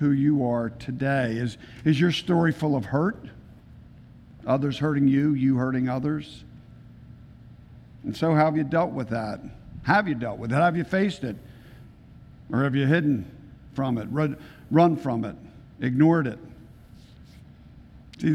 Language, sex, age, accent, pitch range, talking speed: English, male, 50-69, American, 120-145 Hz, 155 wpm